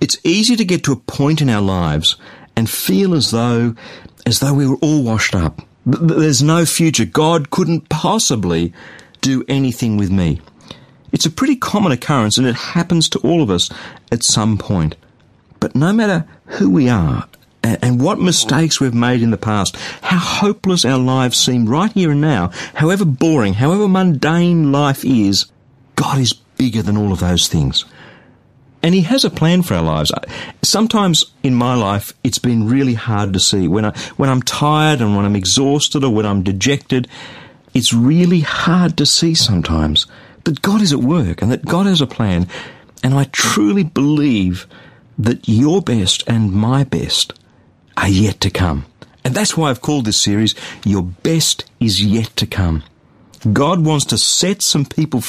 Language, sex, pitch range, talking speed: English, male, 105-155 Hz, 180 wpm